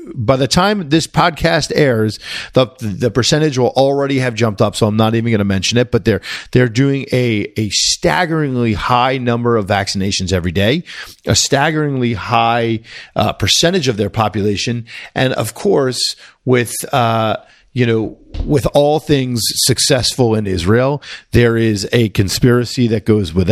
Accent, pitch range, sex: American, 105-130 Hz, male